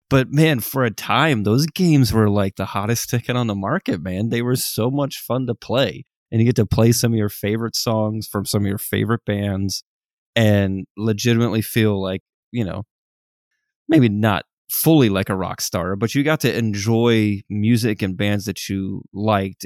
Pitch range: 100-130 Hz